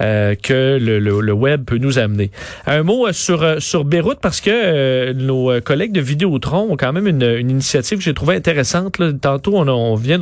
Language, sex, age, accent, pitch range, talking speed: French, male, 40-59, Canadian, 125-170 Hz, 230 wpm